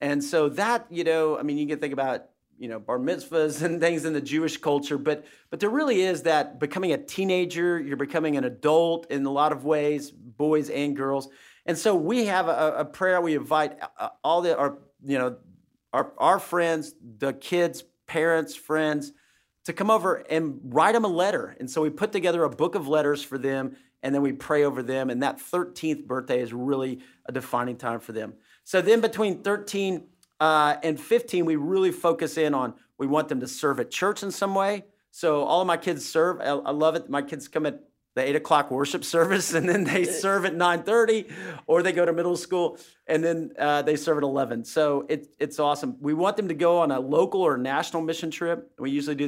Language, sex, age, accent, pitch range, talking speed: English, male, 50-69, American, 140-175 Hz, 215 wpm